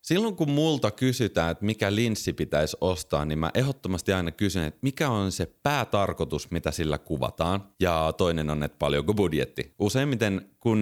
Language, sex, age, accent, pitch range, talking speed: Finnish, male, 30-49, native, 80-110 Hz, 165 wpm